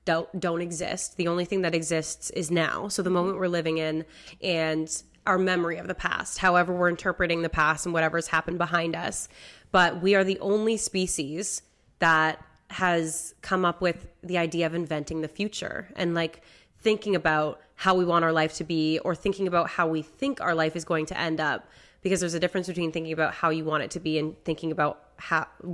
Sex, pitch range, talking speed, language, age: female, 160-185 Hz, 210 wpm, English, 20-39